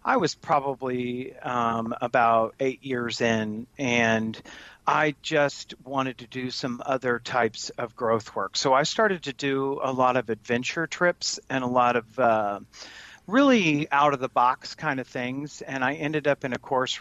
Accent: American